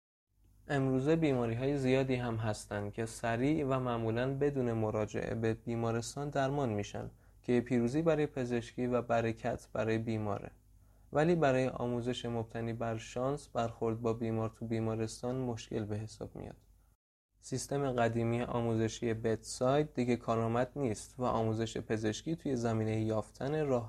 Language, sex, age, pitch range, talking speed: Persian, male, 20-39, 110-120 Hz, 140 wpm